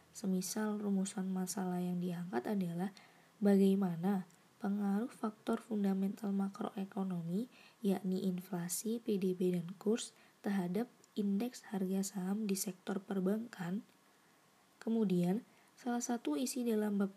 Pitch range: 185-220 Hz